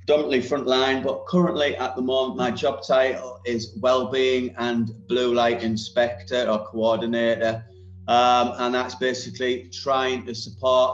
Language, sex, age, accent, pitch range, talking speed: English, male, 30-49, British, 105-130 Hz, 135 wpm